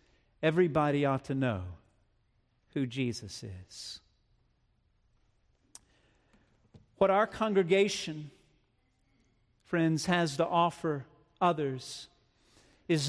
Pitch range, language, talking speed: 135-190 Hz, English, 75 wpm